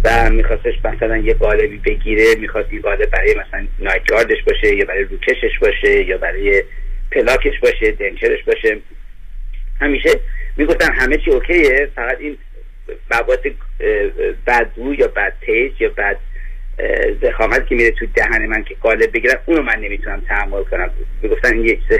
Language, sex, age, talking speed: Persian, male, 30-49, 145 wpm